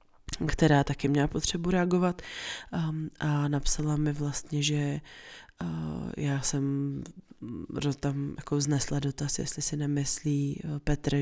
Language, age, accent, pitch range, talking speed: Czech, 20-39, native, 140-155 Hz, 105 wpm